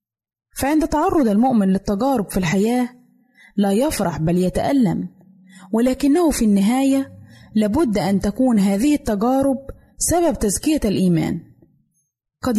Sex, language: female, Arabic